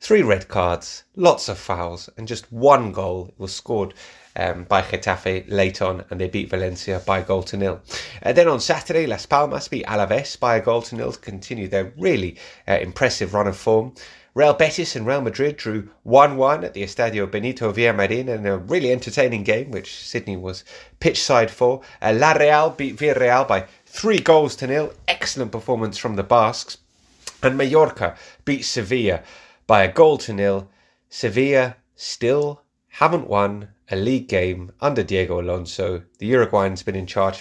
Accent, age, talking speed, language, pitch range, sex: British, 30-49, 180 wpm, English, 95-130 Hz, male